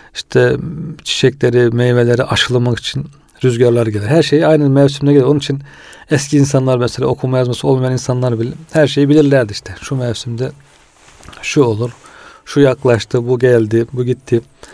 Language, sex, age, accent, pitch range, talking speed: Turkish, male, 40-59, native, 115-135 Hz, 145 wpm